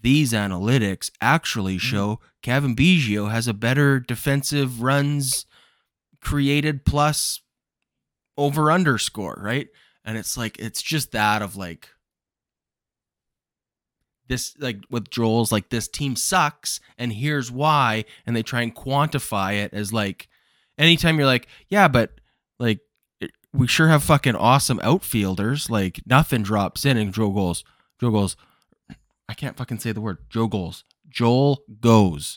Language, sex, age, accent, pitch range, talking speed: English, male, 20-39, American, 105-135 Hz, 135 wpm